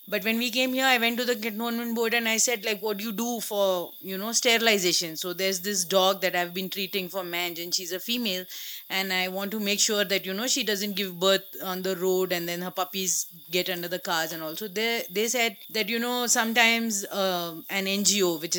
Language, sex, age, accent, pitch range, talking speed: English, female, 30-49, Indian, 180-215 Hz, 240 wpm